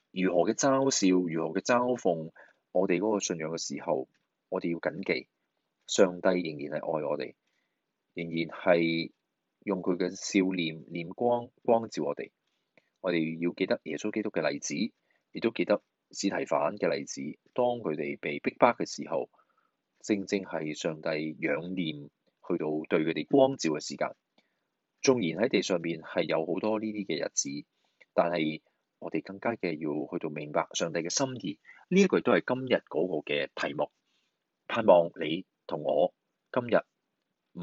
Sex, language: male, Chinese